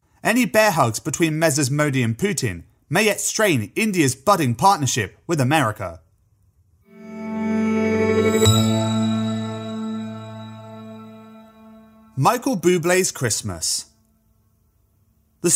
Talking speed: 75 wpm